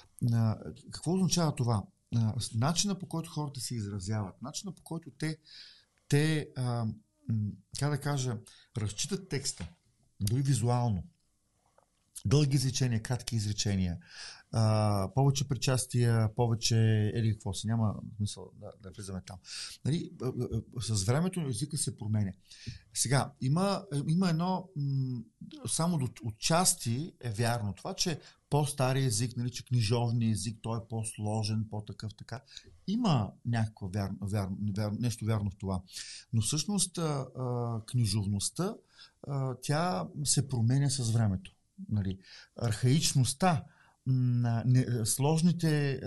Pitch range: 110-140 Hz